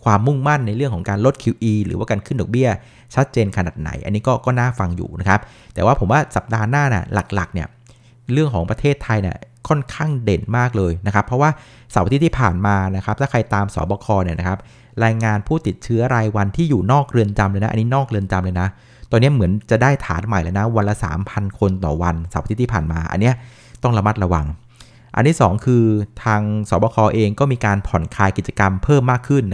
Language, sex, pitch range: Thai, male, 100-125 Hz